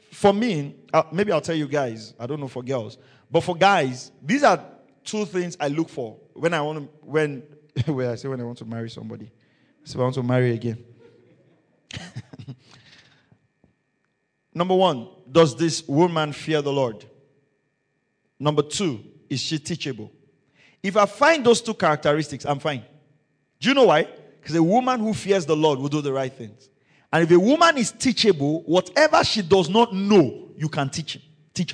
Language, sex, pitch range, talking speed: English, male, 135-180 Hz, 180 wpm